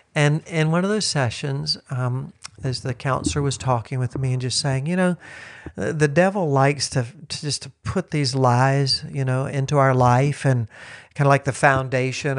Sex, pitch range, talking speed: male, 125-150 Hz, 195 wpm